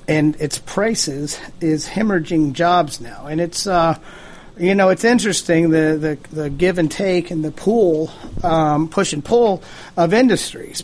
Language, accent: English, American